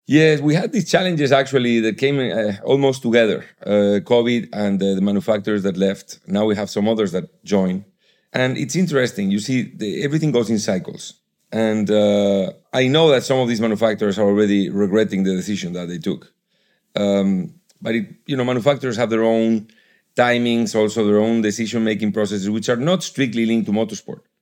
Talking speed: 185 wpm